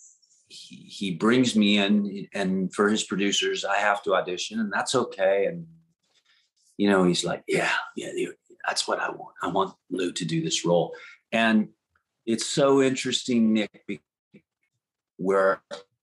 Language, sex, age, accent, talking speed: English, male, 40-59, American, 145 wpm